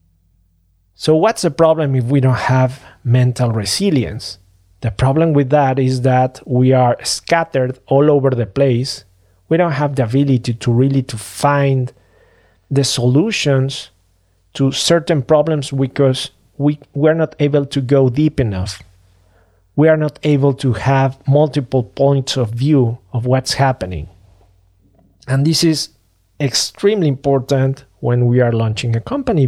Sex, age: male, 40-59